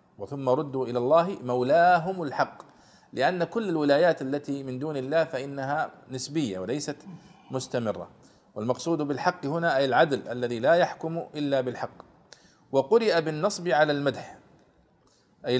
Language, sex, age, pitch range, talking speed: Arabic, male, 40-59, 130-175 Hz, 125 wpm